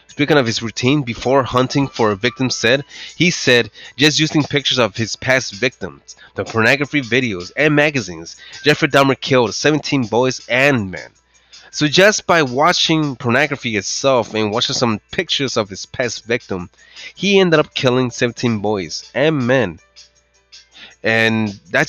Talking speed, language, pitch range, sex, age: 150 wpm, English, 110-145 Hz, male, 20-39